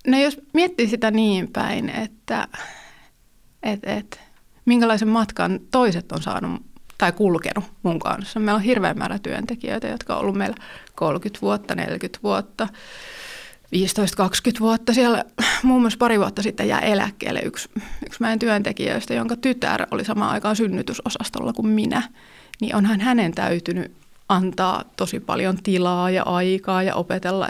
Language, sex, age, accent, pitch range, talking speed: Finnish, female, 30-49, native, 190-230 Hz, 145 wpm